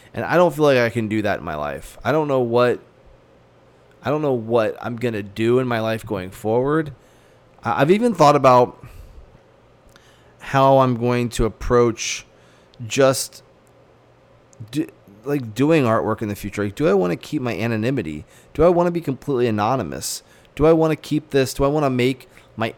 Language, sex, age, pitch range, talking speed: English, male, 30-49, 110-135 Hz, 185 wpm